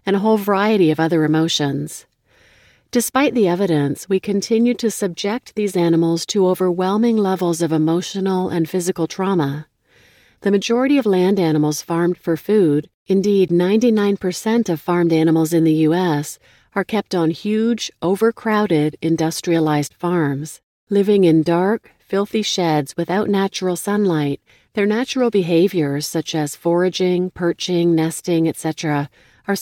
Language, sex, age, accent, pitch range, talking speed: English, female, 40-59, American, 160-205 Hz, 130 wpm